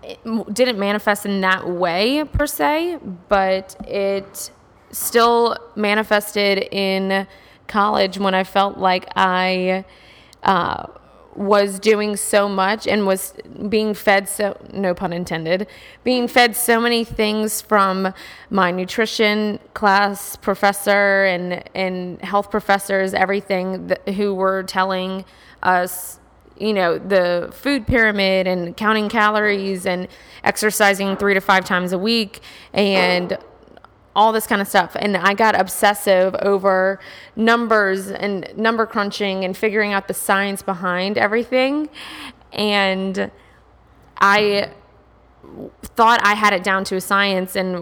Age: 20-39